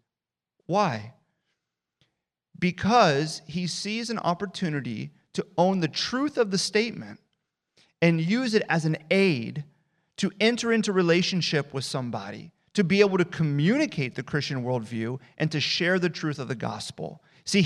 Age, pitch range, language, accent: 30-49, 135-185 Hz, English, American